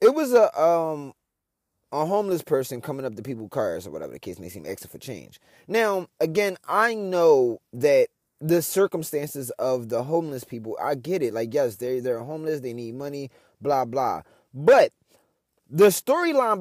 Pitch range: 140-190 Hz